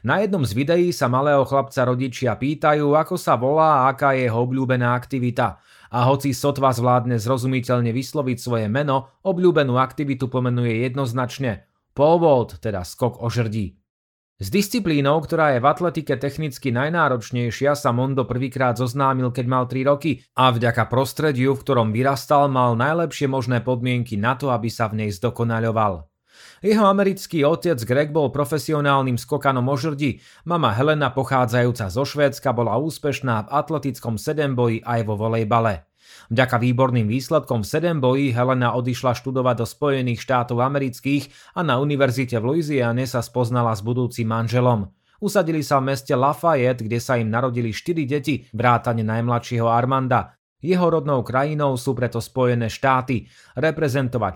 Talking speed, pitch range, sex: 150 wpm, 120-145 Hz, male